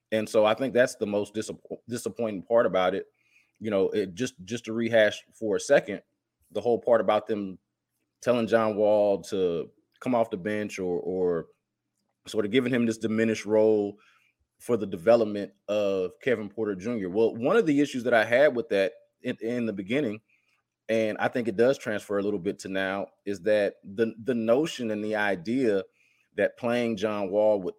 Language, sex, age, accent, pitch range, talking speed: English, male, 30-49, American, 105-120 Hz, 190 wpm